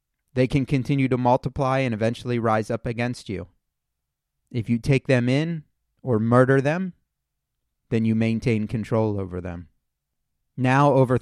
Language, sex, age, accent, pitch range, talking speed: English, male, 30-49, American, 100-140 Hz, 145 wpm